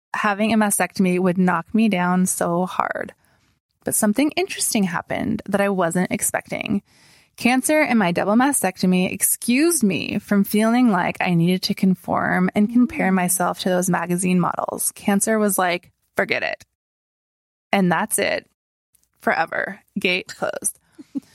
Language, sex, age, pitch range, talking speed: English, female, 20-39, 180-225 Hz, 140 wpm